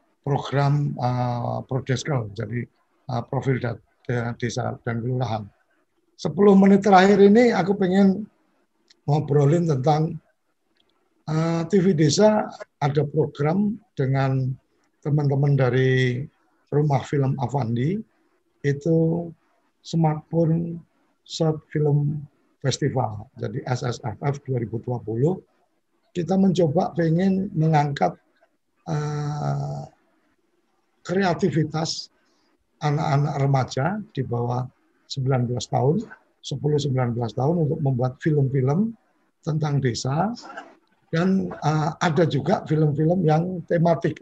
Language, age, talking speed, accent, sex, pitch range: Indonesian, 50-69, 85 wpm, native, male, 135-170 Hz